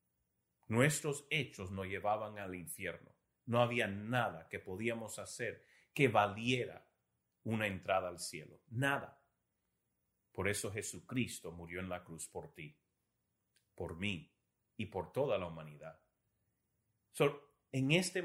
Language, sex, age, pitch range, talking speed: Spanish, male, 40-59, 105-145 Hz, 120 wpm